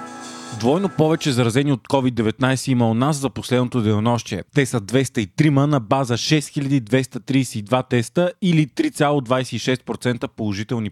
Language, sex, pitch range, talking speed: Bulgarian, male, 120-150 Hz, 115 wpm